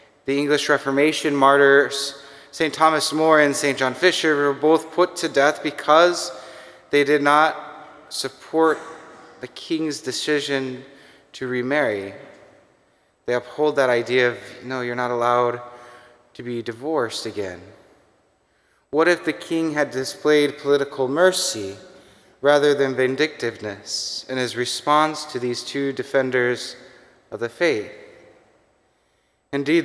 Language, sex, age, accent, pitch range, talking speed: English, male, 20-39, American, 135-155 Hz, 125 wpm